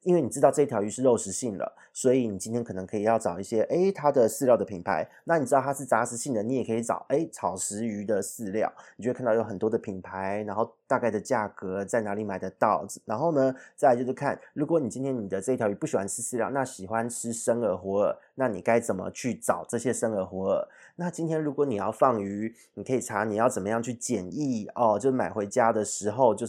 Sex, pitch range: male, 105-130 Hz